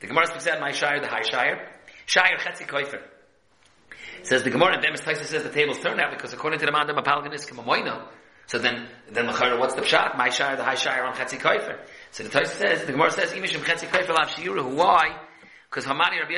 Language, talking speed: English, 210 wpm